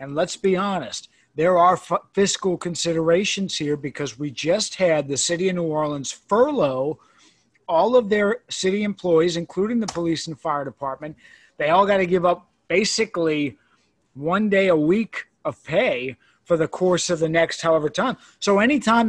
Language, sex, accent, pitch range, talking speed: English, male, American, 155-200 Hz, 165 wpm